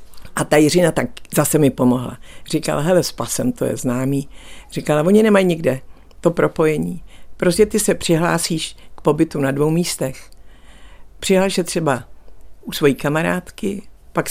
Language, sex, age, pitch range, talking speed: Czech, female, 60-79, 130-190 Hz, 150 wpm